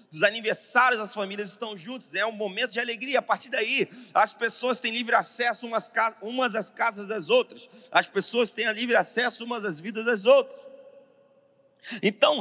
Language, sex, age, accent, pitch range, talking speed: Portuguese, male, 30-49, Brazilian, 215-260 Hz, 175 wpm